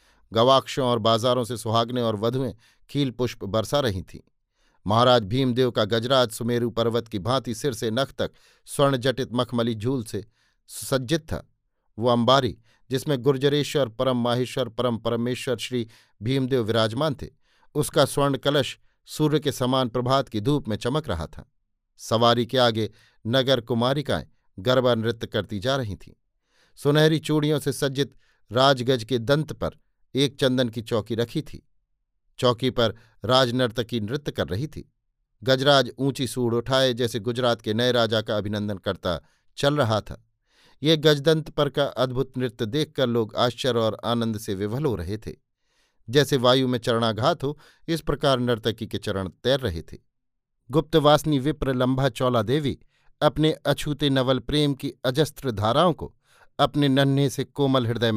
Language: Hindi